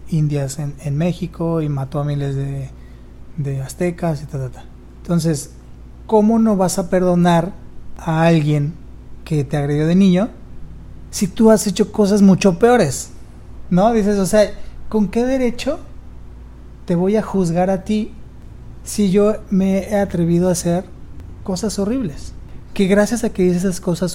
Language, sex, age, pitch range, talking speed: Spanish, male, 30-49, 145-195 Hz, 160 wpm